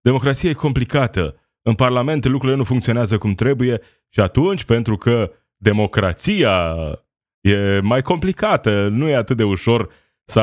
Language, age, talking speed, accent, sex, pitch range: Romanian, 20-39, 140 wpm, native, male, 95-115 Hz